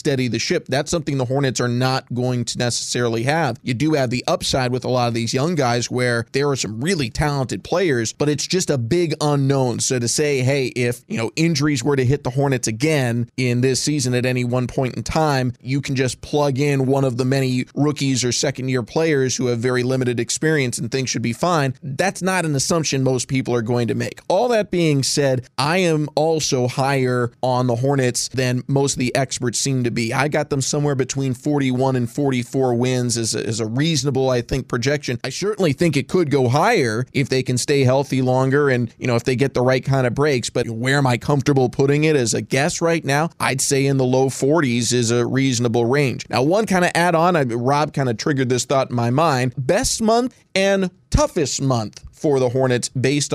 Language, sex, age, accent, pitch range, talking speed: English, male, 20-39, American, 125-145 Hz, 225 wpm